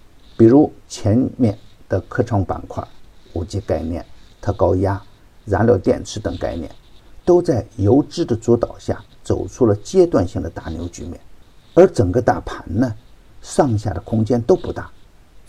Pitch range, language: 95-125 Hz, Chinese